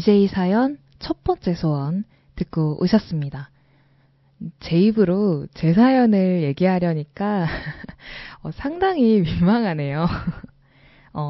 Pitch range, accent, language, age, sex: 160-225 Hz, native, Korean, 10-29, female